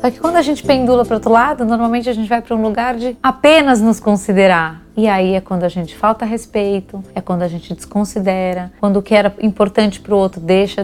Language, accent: Portuguese, Brazilian